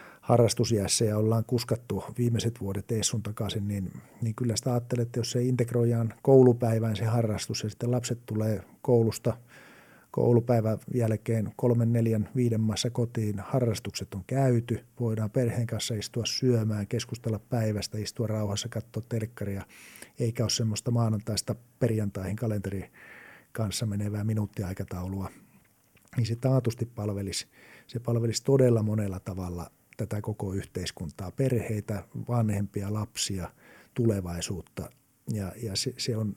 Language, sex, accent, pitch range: English, male, Finnish, 105-120 Hz